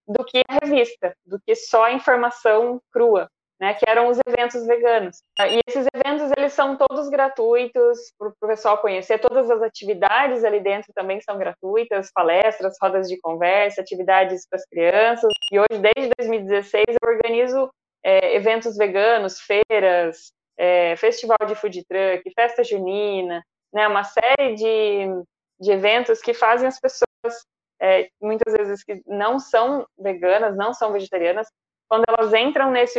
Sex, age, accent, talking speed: female, 20-39, Brazilian, 155 wpm